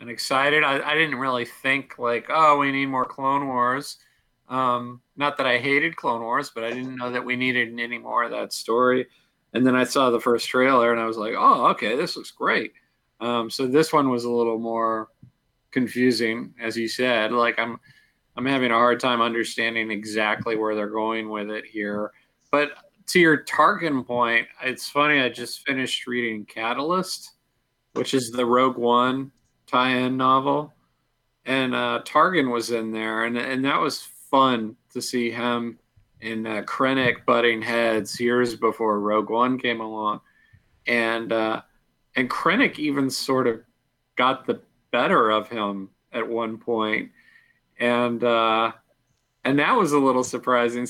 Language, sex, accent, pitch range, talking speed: English, male, American, 115-130 Hz, 170 wpm